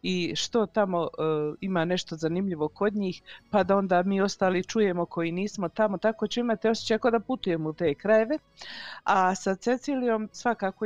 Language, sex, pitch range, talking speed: Croatian, female, 160-195 Hz, 175 wpm